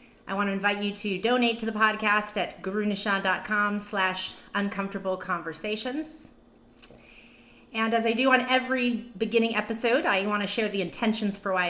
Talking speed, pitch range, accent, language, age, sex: 150 wpm, 205-240 Hz, American, English, 30-49, female